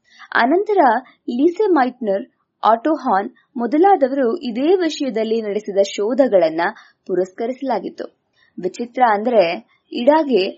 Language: English